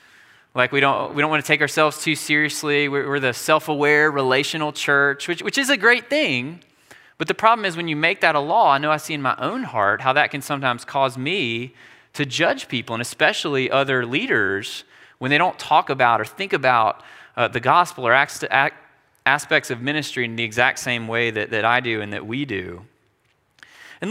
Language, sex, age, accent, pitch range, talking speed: English, male, 20-39, American, 130-175 Hz, 205 wpm